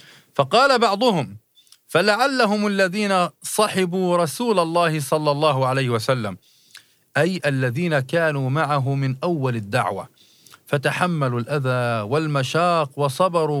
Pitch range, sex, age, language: 125-160 Hz, male, 40-59, Arabic